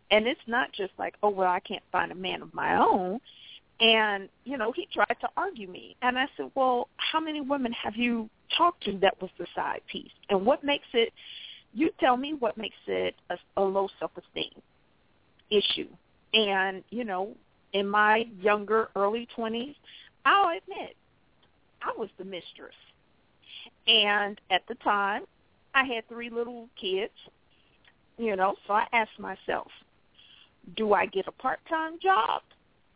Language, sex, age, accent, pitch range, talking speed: English, female, 40-59, American, 195-260 Hz, 160 wpm